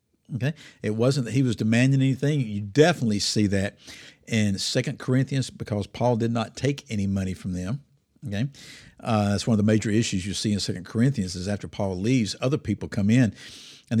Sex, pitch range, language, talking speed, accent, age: male, 105-145 Hz, English, 195 wpm, American, 50-69